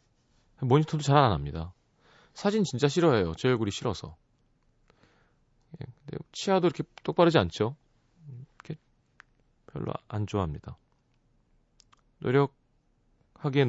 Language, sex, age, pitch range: Korean, male, 30-49, 115-155 Hz